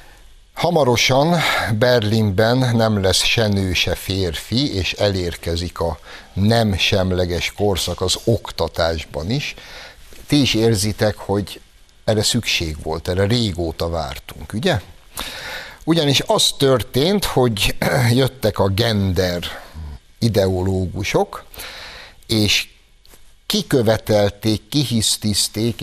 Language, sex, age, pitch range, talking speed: Hungarian, male, 60-79, 85-115 Hz, 85 wpm